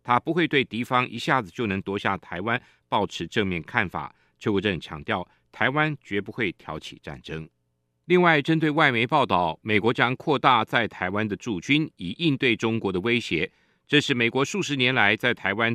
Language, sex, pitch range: Chinese, male, 100-145 Hz